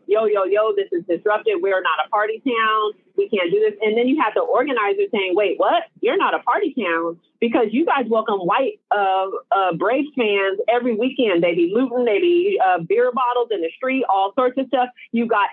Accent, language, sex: American, English, female